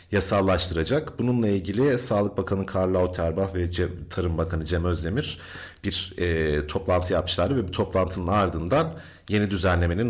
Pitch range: 85-110 Hz